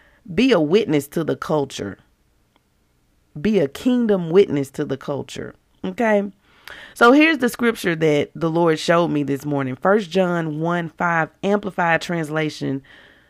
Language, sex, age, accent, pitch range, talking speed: English, female, 40-59, American, 155-210 Hz, 140 wpm